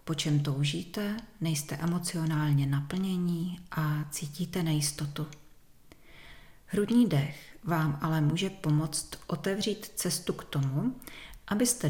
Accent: native